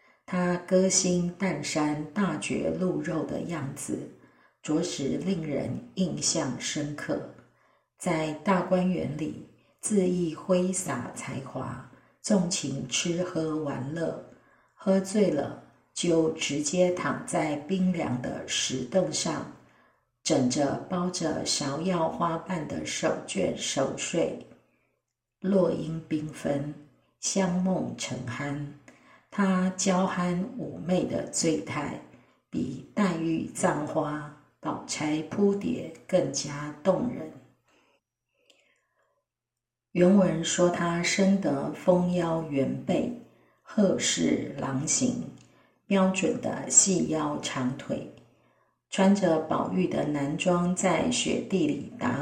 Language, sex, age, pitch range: Chinese, female, 50-69, 150-185 Hz